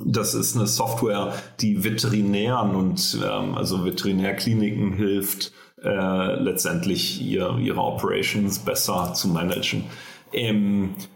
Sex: male